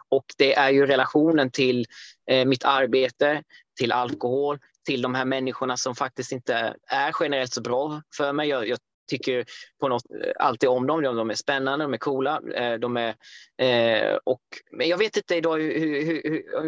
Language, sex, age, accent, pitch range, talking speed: Swedish, male, 20-39, native, 125-155 Hz, 175 wpm